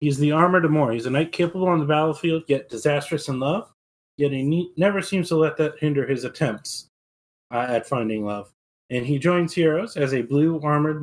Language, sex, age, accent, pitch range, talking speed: English, male, 30-49, American, 130-155 Hz, 195 wpm